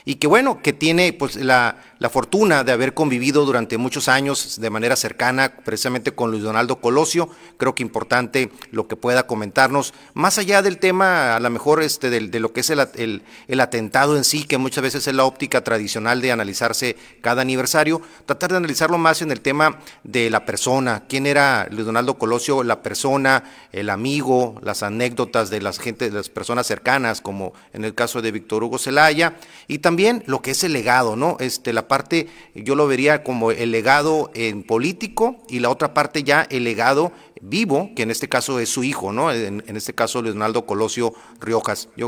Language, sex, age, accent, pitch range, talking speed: Spanish, male, 40-59, Mexican, 115-150 Hz, 200 wpm